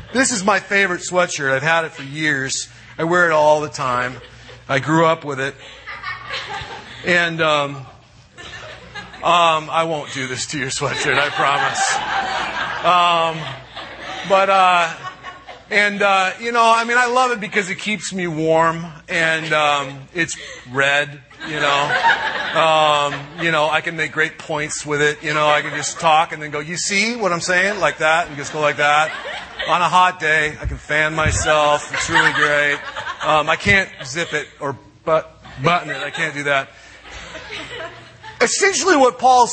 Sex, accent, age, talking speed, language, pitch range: male, American, 30-49, 175 wpm, English, 150-220 Hz